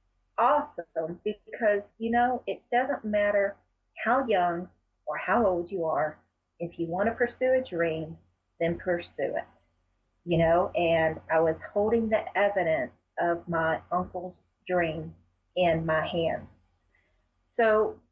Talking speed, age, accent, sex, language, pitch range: 135 wpm, 40-59, American, female, English, 165-210 Hz